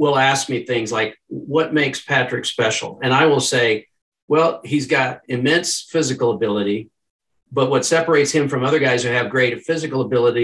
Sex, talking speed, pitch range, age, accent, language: male, 180 wpm, 125-155 Hz, 50-69, American, English